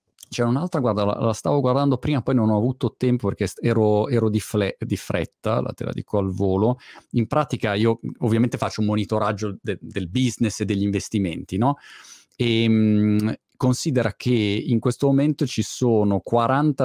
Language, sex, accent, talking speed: Italian, male, native, 170 wpm